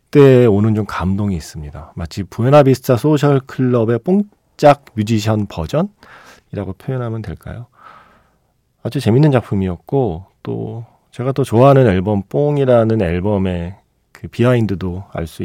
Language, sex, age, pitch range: Korean, male, 40-59, 90-125 Hz